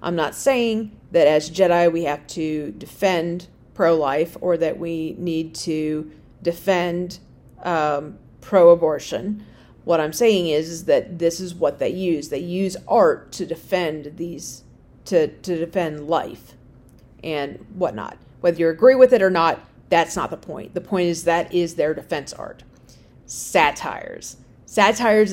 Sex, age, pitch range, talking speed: female, 40-59, 160-215 Hz, 150 wpm